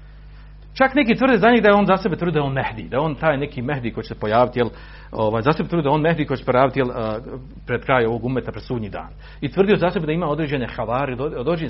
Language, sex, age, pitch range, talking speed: Croatian, male, 50-69, 115-170 Hz, 270 wpm